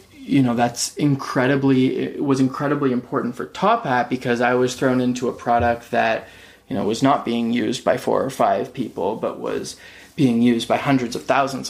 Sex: male